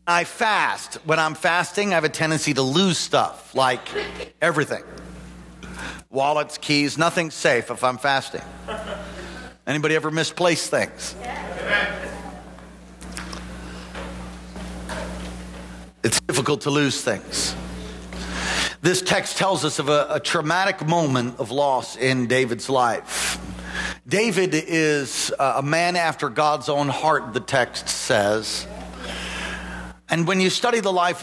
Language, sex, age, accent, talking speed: English, male, 50-69, American, 115 wpm